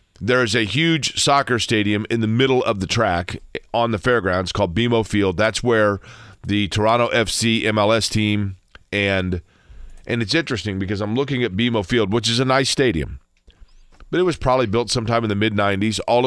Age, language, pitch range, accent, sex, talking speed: 40-59, English, 95-115 Hz, American, male, 185 wpm